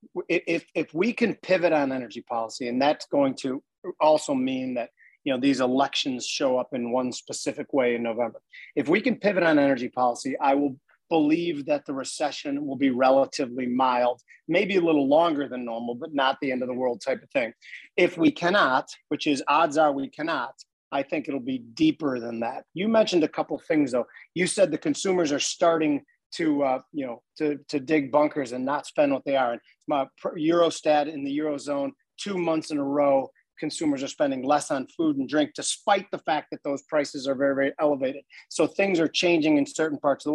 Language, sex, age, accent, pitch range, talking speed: English, male, 40-59, American, 135-185 Hz, 210 wpm